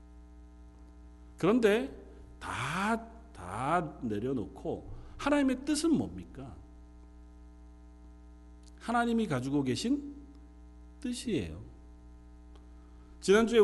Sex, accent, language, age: male, native, Korean, 40-59